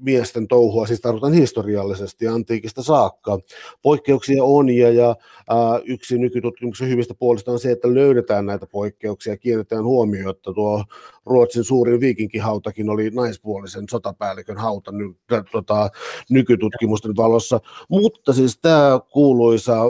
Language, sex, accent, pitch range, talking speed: Finnish, male, native, 110-125 Hz, 125 wpm